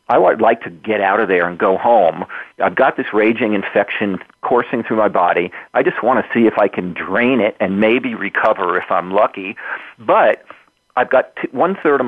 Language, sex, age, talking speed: English, male, 40-59, 205 wpm